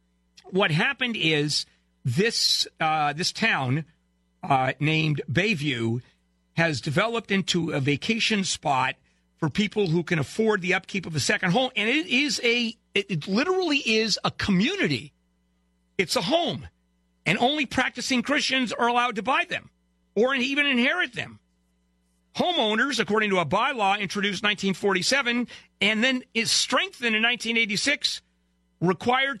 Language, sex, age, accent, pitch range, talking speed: English, male, 50-69, American, 145-235 Hz, 135 wpm